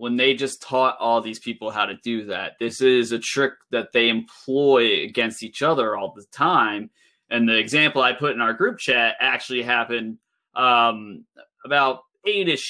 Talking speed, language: 180 wpm, English